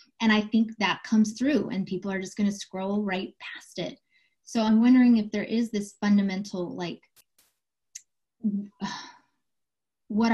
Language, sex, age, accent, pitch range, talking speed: English, female, 20-39, American, 190-230 Hz, 145 wpm